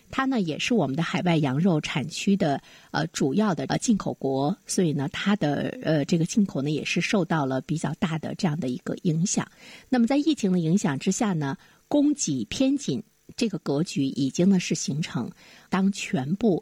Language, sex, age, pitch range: Chinese, female, 50-69, 160-225 Hz